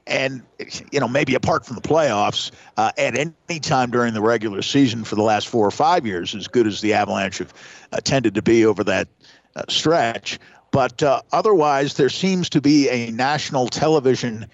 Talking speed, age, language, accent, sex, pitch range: 195 wpm, 50-69, English, American, male, 125-155 Hz